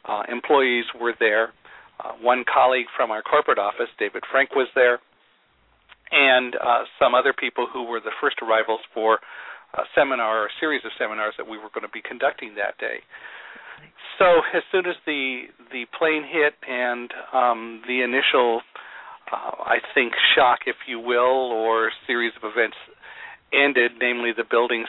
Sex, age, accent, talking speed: male, 50-69, American, 165 wpm